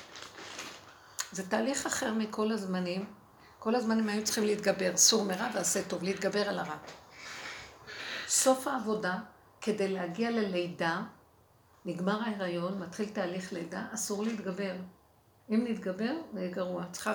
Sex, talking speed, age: female, 125 wpm, 60-79